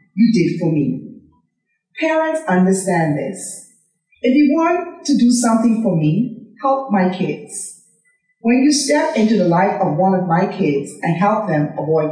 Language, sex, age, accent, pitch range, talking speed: English, female, 40-59, American, 175-230 Hz, 165 wpm